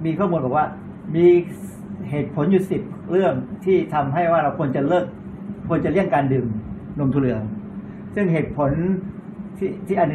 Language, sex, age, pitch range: Thai, male, 60-79, 130-180 Hz